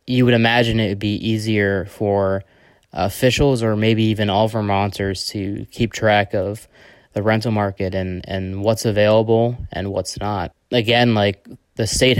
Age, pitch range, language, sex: 20-39, 100-115 Hz, English, male